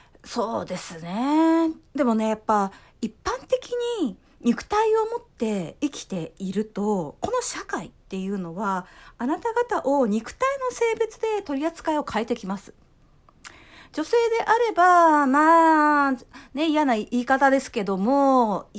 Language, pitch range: Japanese, 225-370 Hz